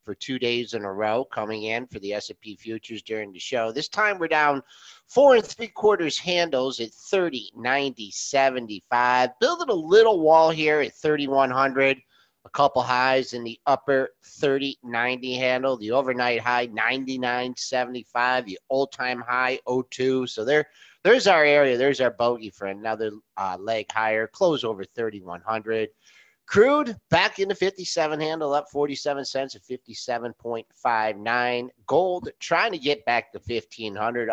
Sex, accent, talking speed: male, American, 155 wpm